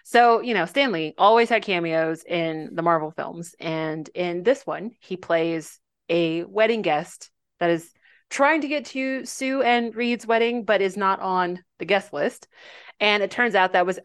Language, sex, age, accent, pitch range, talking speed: English, female, 30-49, American, 165-230 Hz, 185 wpm